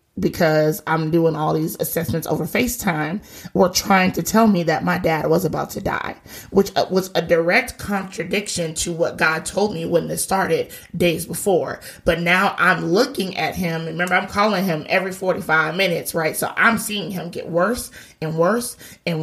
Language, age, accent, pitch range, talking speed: English, 30-49, American, 170-205 Hz, 180 wpm